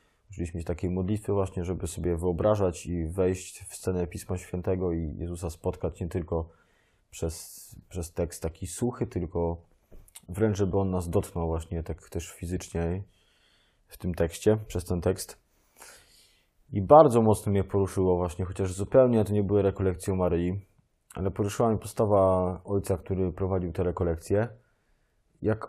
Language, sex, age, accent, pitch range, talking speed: Polish, male, 20-39, native, 90-100 Hz, 145 wpm